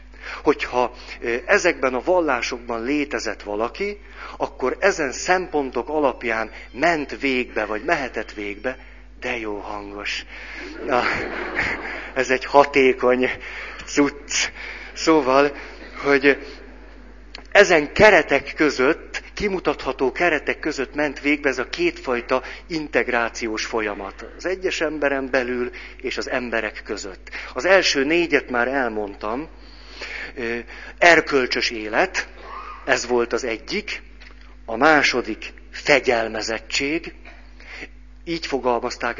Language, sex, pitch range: Hungarian, male, 110-145 Hz